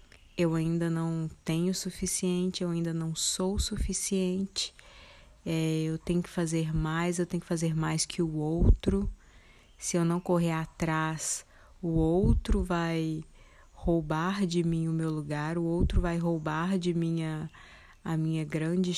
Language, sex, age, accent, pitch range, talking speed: Portuguese, female, 20-39, Brazilian, 160-180 Hz, 150 wpm